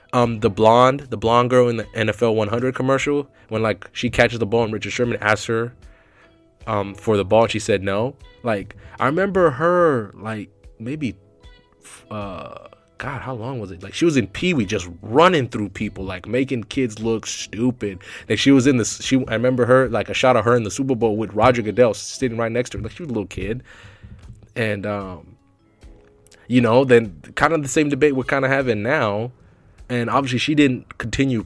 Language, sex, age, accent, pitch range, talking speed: English, male, 20-39, American, 105-130 Hz, 210 wpm